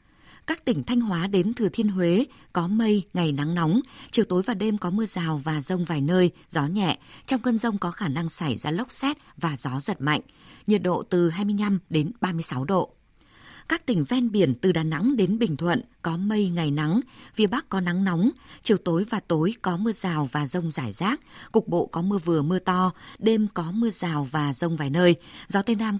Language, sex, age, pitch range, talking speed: Vietnamese, female, 20-39, 165-215 Hz, 220 wpm